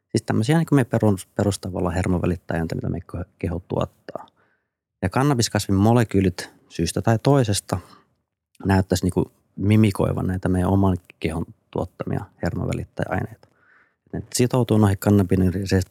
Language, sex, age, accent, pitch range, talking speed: Finnish, male, 30-49, native, 90-105 Hz, 105 wpm